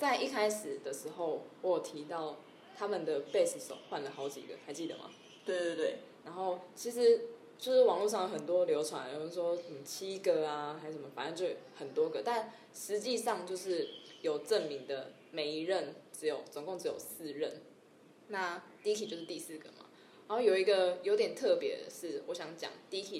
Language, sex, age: Chinese, female, 20-39